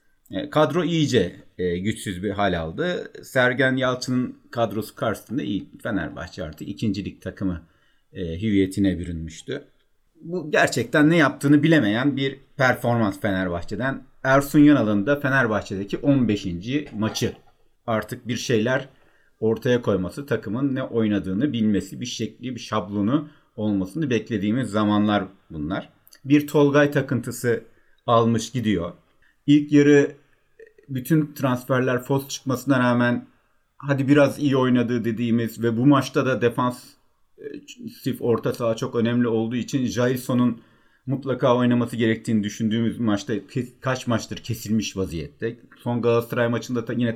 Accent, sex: native, male